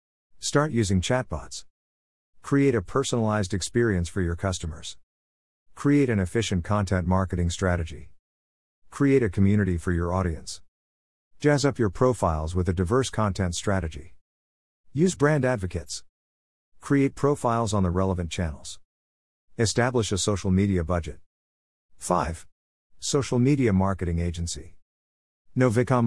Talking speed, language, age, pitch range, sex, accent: 115 wpm, English, 50-69, 70-115 Hz, male, American